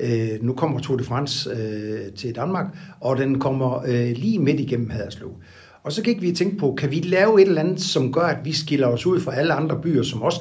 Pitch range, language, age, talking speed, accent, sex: 125-170 Hz, Danish, 60-79, 240 wpm, native, male